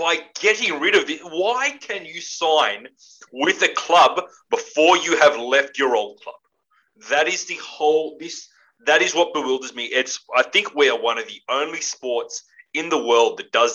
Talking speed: 195 wpm